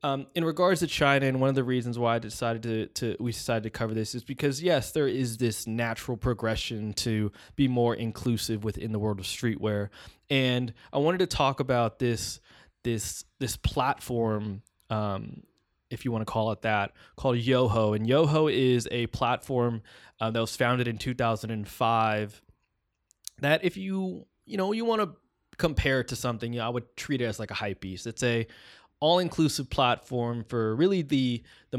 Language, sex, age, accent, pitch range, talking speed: English, male, 20-39, American, 110-135 Hz, 185 wpm